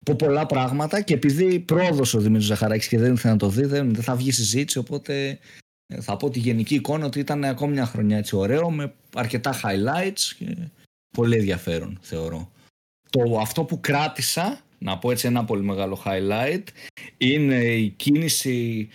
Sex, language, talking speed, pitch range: male, Greek, 160 wpm, 115-145 Hz